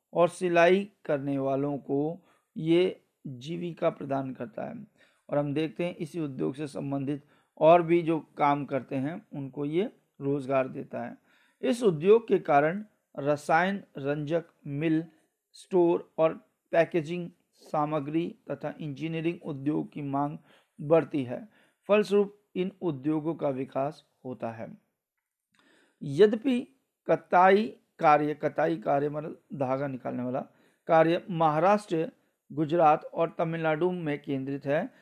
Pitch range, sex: 145-185 Hz, male